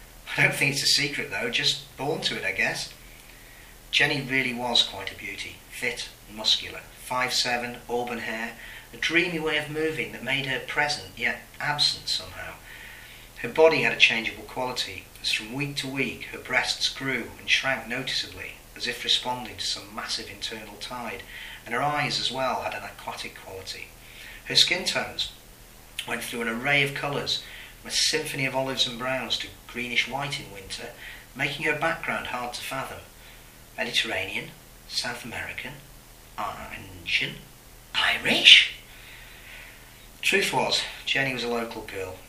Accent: British